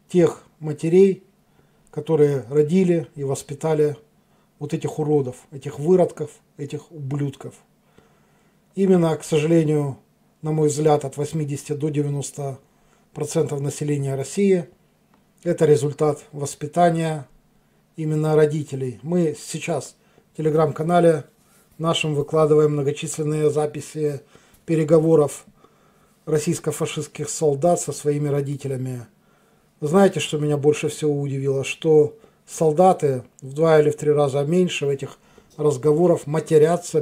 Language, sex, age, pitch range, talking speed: Russian, male, 40-59, 145-165 Hz, 100 wpm